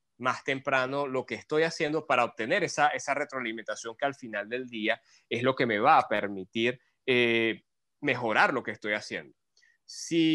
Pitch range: 115-145 Hz